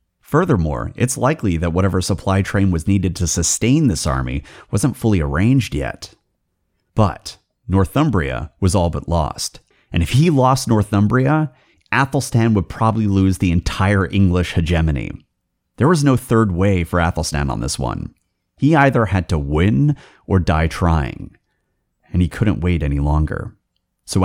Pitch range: 80-105 Hz